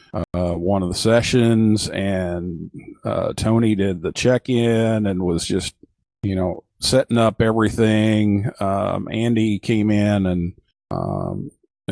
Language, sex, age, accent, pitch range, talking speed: English, male, 50-69, American, 95-115 Hz, 125 wpm